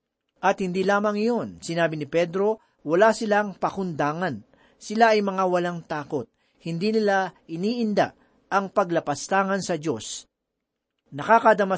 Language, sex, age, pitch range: Filipino, male, 40-59, 160-215 Hz